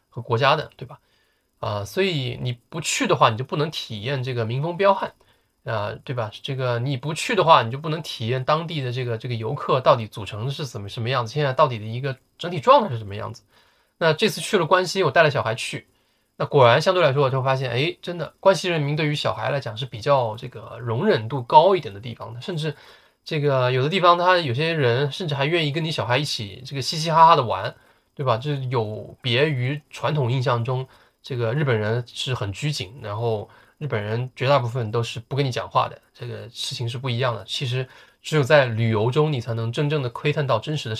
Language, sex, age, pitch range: Chinese, male, 20-39, 115-150 Hz